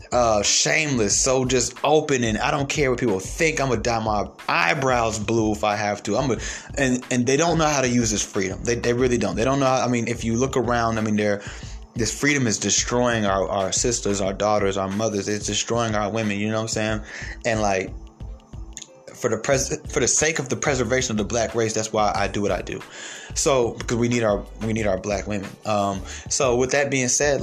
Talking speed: 235 wpm